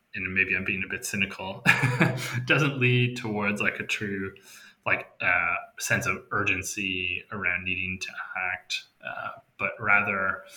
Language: English